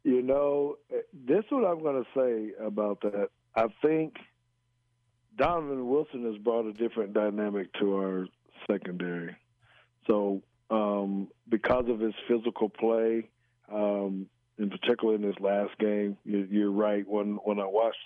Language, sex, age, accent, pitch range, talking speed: English, male, 50-69, American, 100-115 Hz, 145 wpm